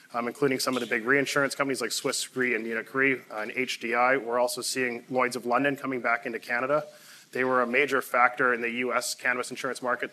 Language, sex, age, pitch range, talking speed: English, male, 20-39, 115-130 Hz, 220 wpm